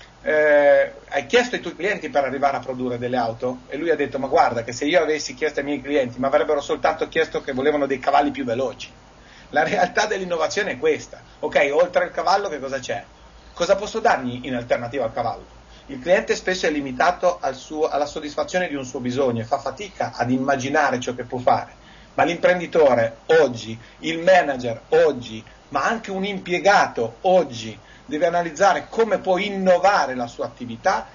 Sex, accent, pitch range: male, native, 130-190 Hz